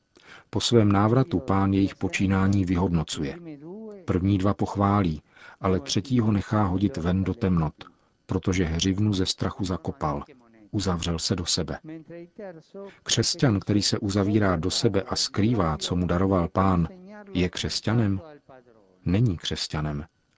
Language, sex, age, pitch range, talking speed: Czech, male, 40-59, 90-105 Hz, 125 wpm